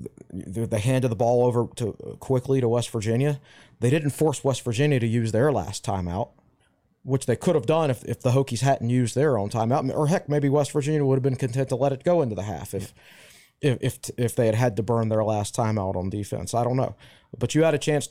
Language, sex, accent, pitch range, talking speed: English, male, American, 110-135 Hz, 240 wpm